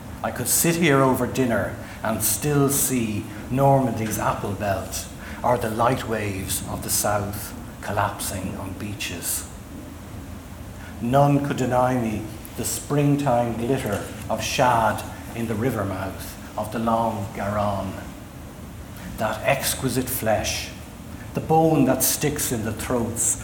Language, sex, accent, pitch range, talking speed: English, male, Irish, 100-125 Hz, 125 wpm